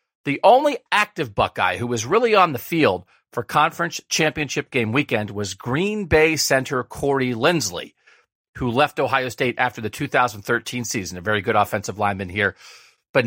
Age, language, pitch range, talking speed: 40-59, English, 115-160 Hz, 165 wpm